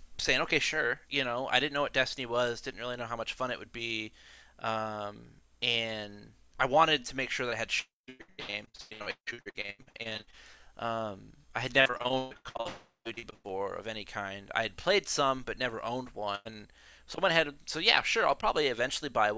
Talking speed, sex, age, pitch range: 220 wpm, male, 20-39, 105-135 Hz